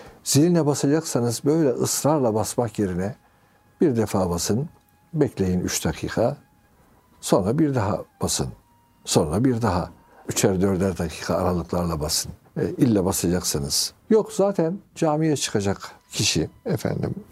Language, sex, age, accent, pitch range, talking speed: Turkish, male, 60-79, native, 95-135 Hz, 115 wpm